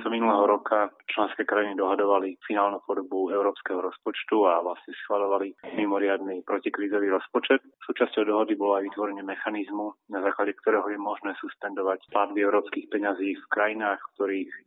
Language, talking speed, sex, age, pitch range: Slovak, 145 wpm, male, 30-49, 95-110 Hz